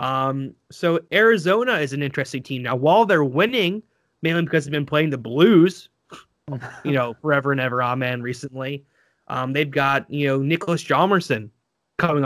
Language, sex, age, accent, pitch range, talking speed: English, male, 20-39, American, 130-165 Hz, 160 wpm